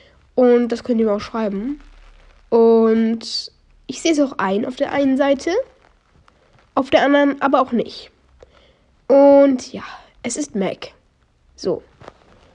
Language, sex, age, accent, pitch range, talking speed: German, female, 10-29, German, 210-270 Hz, 140 wpm